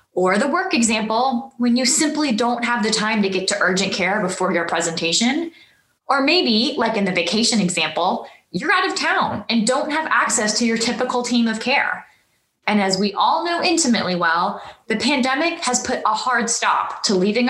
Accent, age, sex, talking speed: American, 20-39, female, 190 wpm